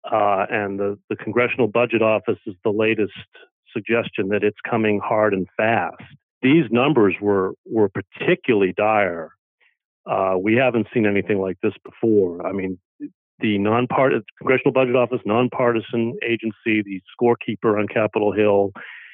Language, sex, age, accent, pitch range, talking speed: English, male, 40-59, American, 105-130 Hz, 140 wpm